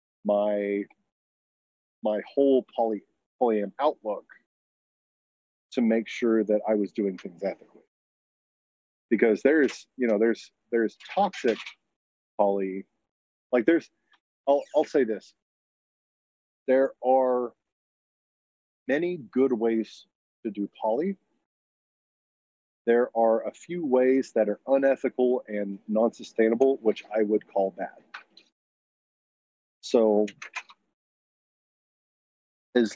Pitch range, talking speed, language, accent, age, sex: 100-130 Hz, 100 wpm, English, American, 40-59, male